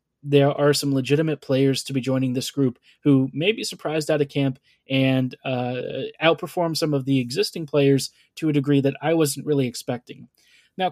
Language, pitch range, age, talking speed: English, 135-150 Hz, 20-39, 185 wpm